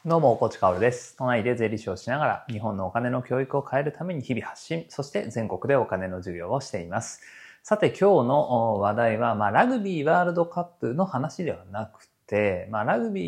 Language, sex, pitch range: Japanese, male, 100-145 Hz